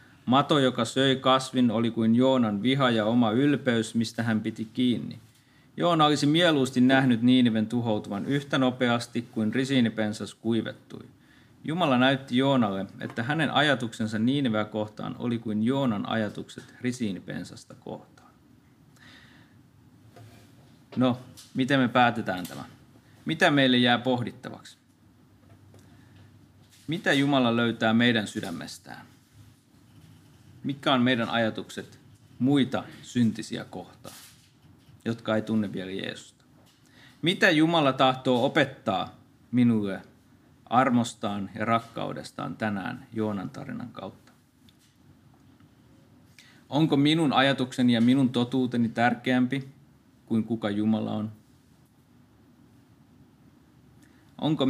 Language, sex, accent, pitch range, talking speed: Finnish, male, native, 110-130 Hz, 100 wpm